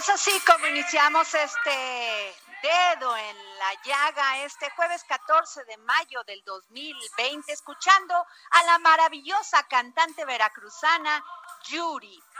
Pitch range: 230-325 Hz